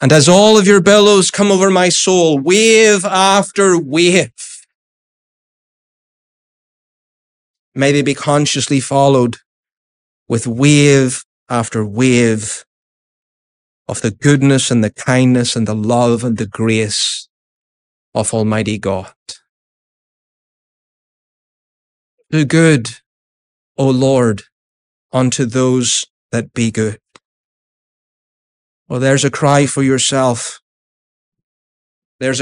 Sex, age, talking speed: male, 30-49, 100 wpm